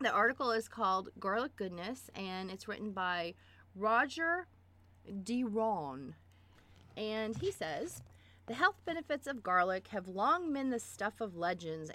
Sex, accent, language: female, American, English